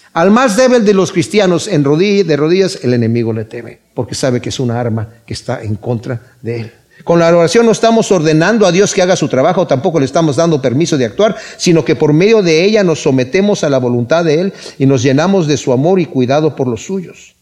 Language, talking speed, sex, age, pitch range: Spanish, 230 wpm, male, 50-69, 155-215 Hz